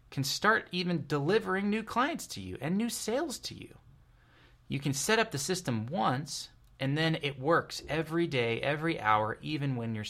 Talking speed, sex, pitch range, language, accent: 185 wpm, male, 120-165 Hz, English, American